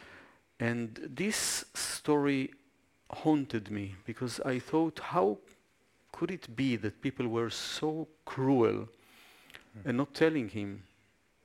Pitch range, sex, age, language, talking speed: 110-145 Hz, male, 50-69, English, 110 wpm